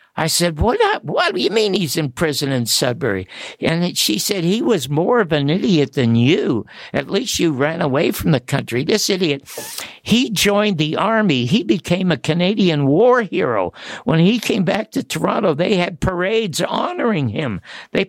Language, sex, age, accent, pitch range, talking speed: English, male, 60-79, American, 140-200 Hz, 180 wpm